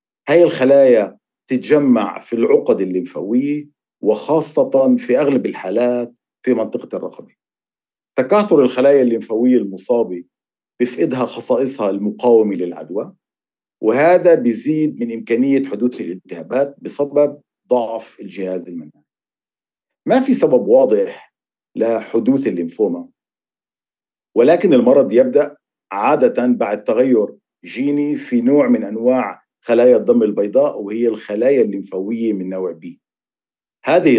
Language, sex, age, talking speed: Hebrew, male, 50-69, 100 wpm